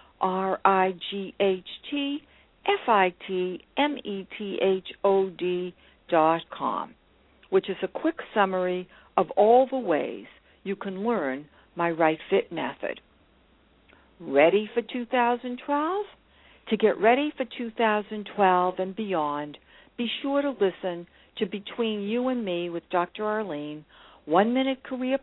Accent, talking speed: American, 135 wpm